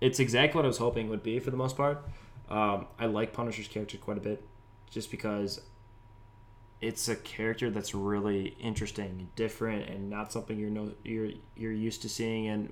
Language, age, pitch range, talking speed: English, 10-29, 105-120 Hz, 195 wpm